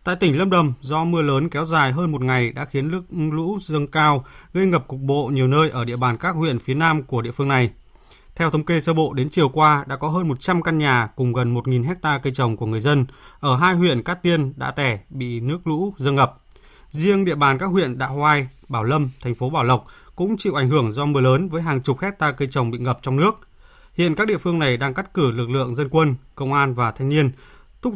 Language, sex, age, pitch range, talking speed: Vietnamese, male, 20-39, 130-165 Hz, 255 wpm